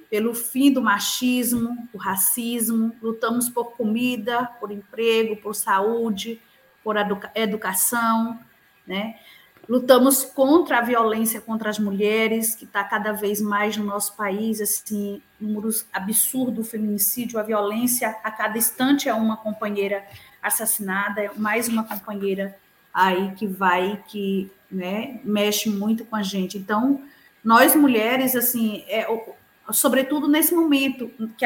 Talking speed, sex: 130 wpm, female